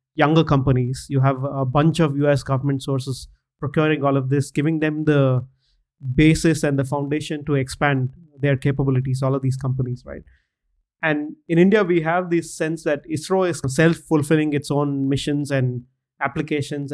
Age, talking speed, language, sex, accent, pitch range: 30-49, 165 wpm, English, male, Indian, 140-160 Hz